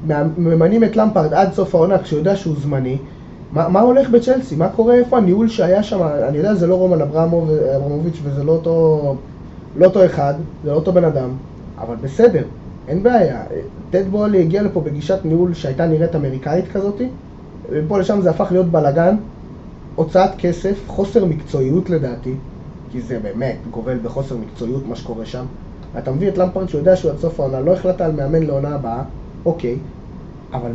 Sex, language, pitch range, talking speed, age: male, Hebrew, 145-190 Hz, 170 wpm, 20-39